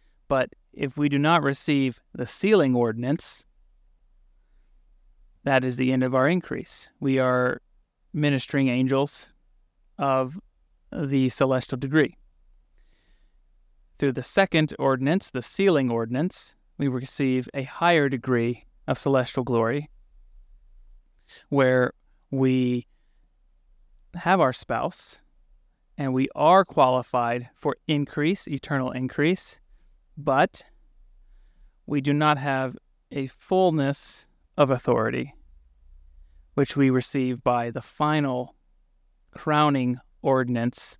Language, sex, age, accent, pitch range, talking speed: English, male, 30-49, American, 120-145 Hz, 100 wpm